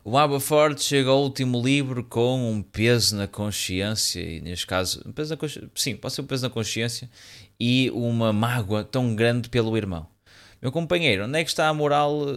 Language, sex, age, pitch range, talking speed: Portuguese, male, 20-39, 105-135 Hz, 200 wpm